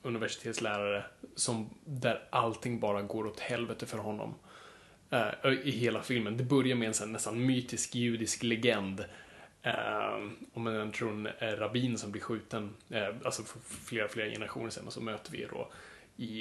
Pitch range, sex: 110-135 Hz, male